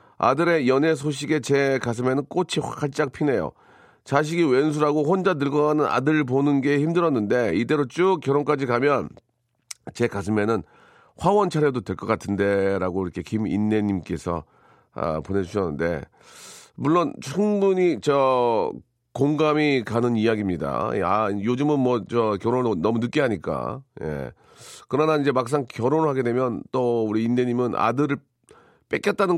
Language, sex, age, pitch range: Korean, male, 40-59, 110-145 Hz